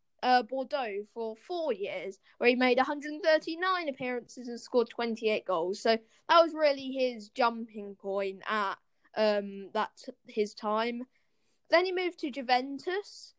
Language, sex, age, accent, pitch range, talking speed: English, female, 10-29, British, 225-280 Hz, 140 wpm